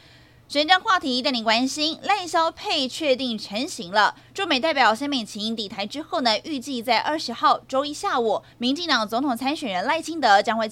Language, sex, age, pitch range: Chinese, female, 20-39, 220-295 Hz